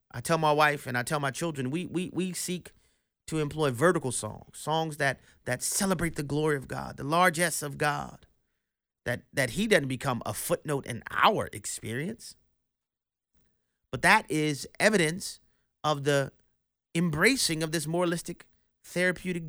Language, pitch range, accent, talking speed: English, 120-180 Hz, American, 155 wpm